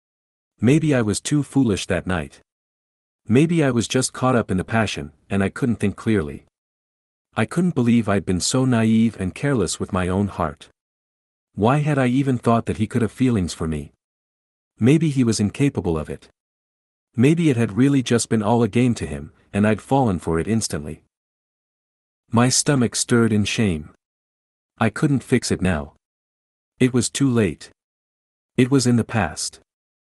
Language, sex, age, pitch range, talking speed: English, male, 50-69, 80-125 Hz, 175 wpm